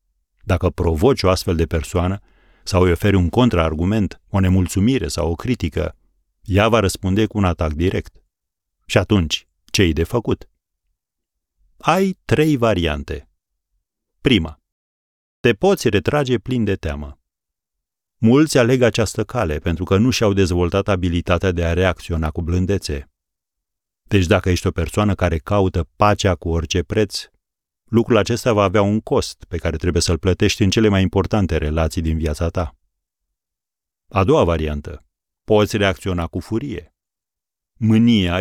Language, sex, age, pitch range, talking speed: Romanian, male, 40-59, 80-105 Hz, 140 wpm